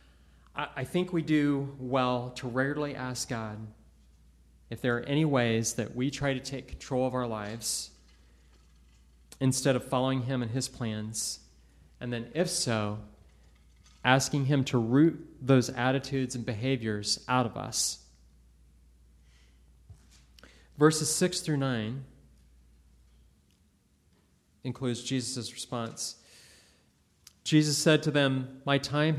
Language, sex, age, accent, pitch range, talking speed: English, male, 30-49, American, 90-135 Hz, 120 wpm